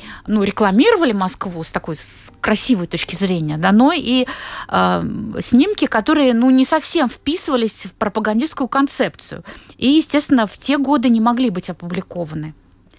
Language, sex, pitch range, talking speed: Russian, female, 195-260 Hz, 135 wpm